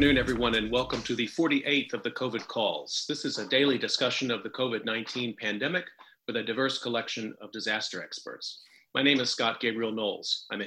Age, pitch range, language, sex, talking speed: 40-59, 110-140 Hz, English, male, 205 wpm